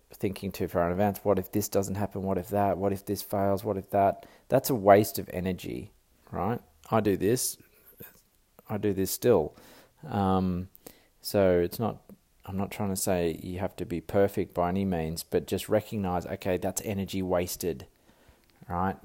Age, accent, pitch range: 20-39, Australian, 85-100 Hz